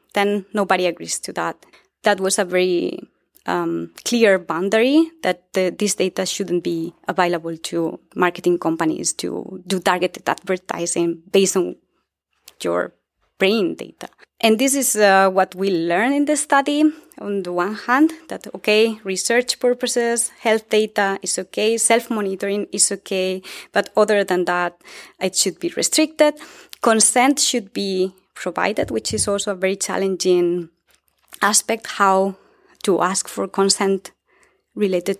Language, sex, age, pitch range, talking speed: German, female, 20-39, 185-235 Hz, 140 wpm